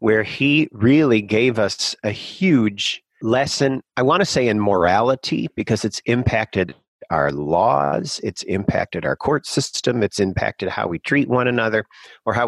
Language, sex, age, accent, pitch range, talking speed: English, male, 40-59, American, 100-125 Hz, 160 wpm